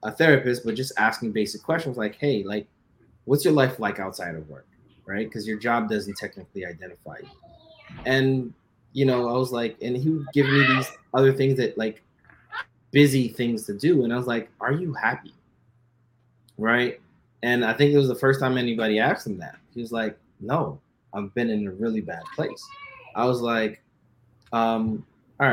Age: 20-39